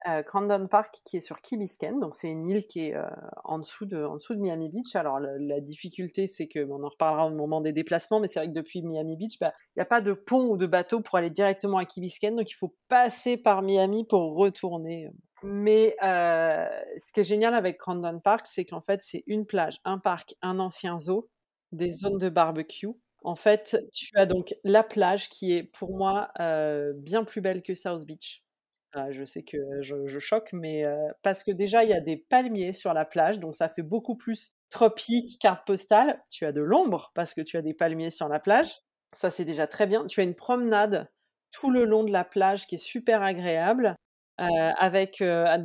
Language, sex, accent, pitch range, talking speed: French, female, French, 165-210 Hz, 220 wpm